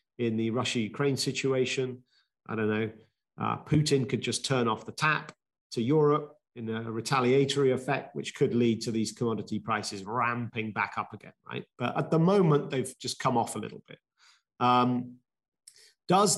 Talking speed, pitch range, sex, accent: 170 wpm, 115-145 Hz, male, British